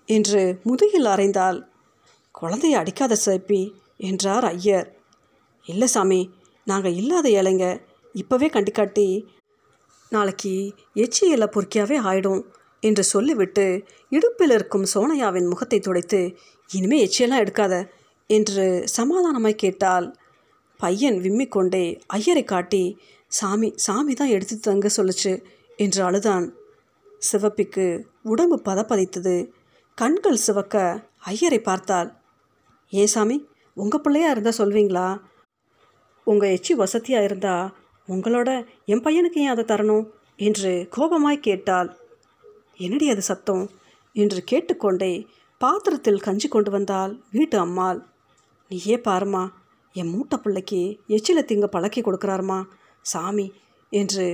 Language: Tamil